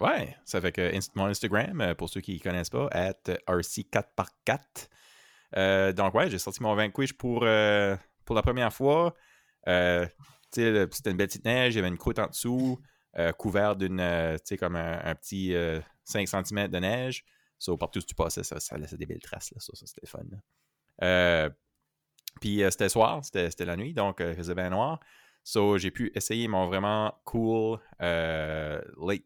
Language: French